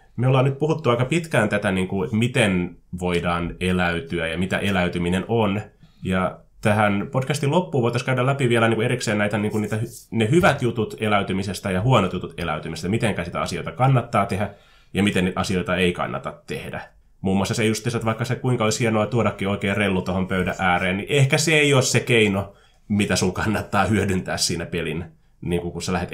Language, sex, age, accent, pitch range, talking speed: Finnish, male, 20-39, native, 90-115 Hz, 195 wpm